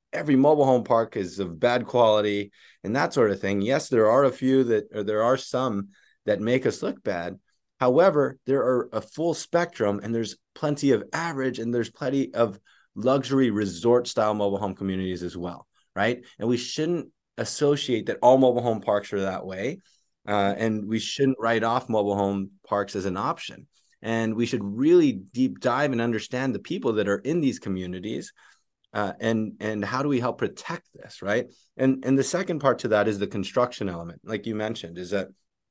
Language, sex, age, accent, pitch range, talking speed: English, male, 20-39, American, 100-130 Hz, 195 wpm